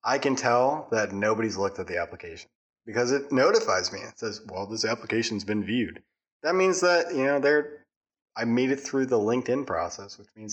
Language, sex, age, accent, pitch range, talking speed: English, male, 20-39, American, 105-145 Hz, 205 wpm